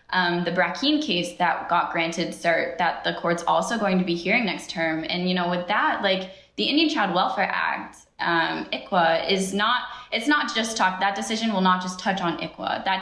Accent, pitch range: American, 180-210 Hz